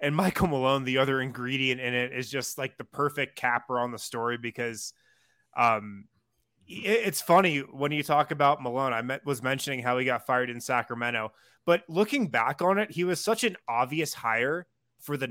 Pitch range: 125-150 Hz